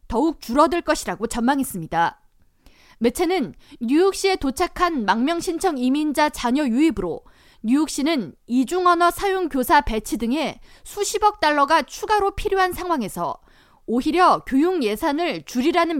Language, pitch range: Korean, 245-345 Hz